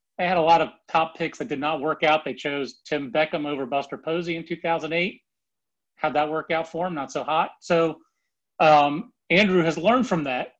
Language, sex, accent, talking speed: English, male, American, 210 wpm